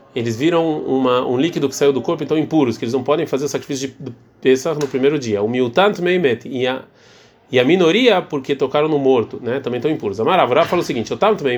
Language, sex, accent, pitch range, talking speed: Portuguese, male, Brazilian, 130-195 Hz, 210 wpm